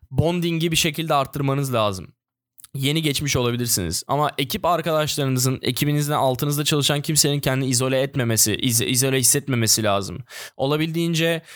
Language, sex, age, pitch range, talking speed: Turkish, male, 10-29, 120-155 Hz, 120 wpm